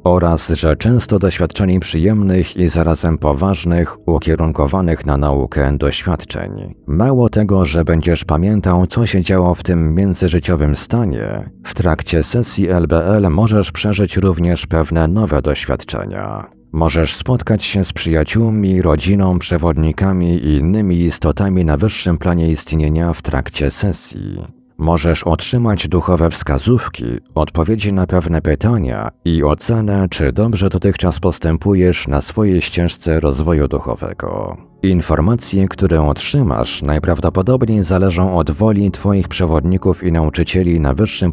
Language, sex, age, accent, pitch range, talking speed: Polish, male, 50-69, native, 80-95 Hz, 120 wpm